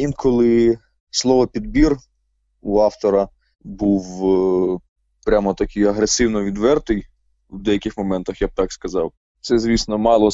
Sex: male